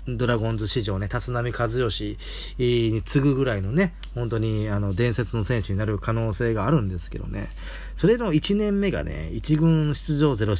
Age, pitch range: 40-59, 100-155 Hz